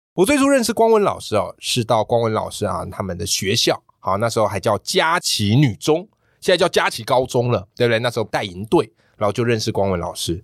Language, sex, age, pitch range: Chinese, male, 20-39, 105-155 Hz